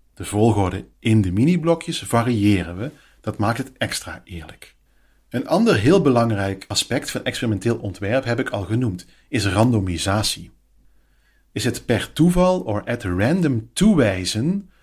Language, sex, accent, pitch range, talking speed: Dutch, male, Dutch, 95-125 Hz, 140 wpm